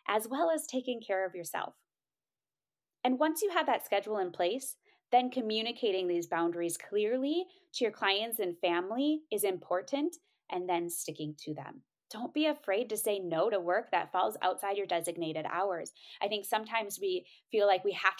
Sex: female